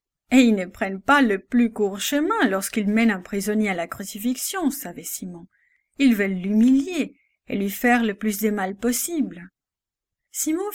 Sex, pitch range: female, 205-265 Hz